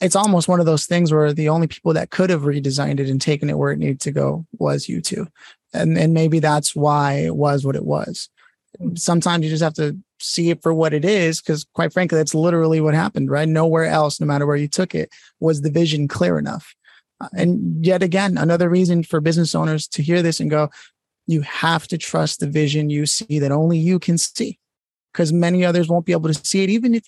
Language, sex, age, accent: English, male, 30-49, American